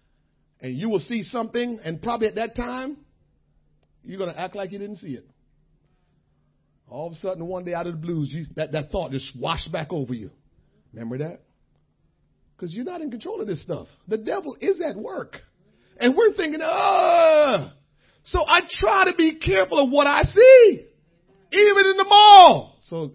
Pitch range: 155-235 Hz